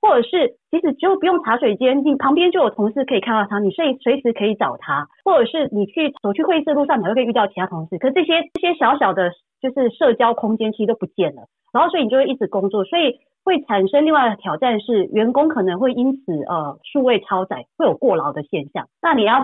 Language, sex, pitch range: Chinese, female, 190-270 Hz